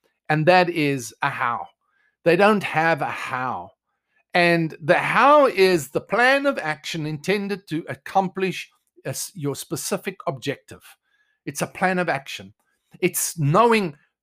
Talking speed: 135 wpm